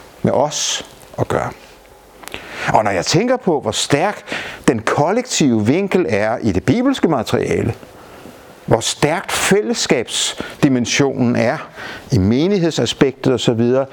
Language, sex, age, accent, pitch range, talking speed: Danish, male, 60-79, native, 125-190 Hz, 110 wpm